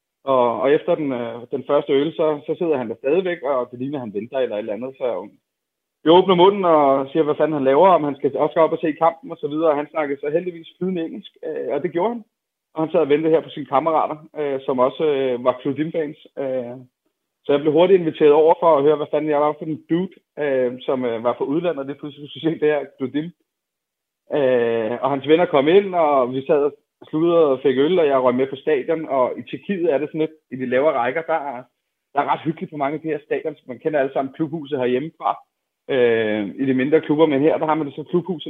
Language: Danish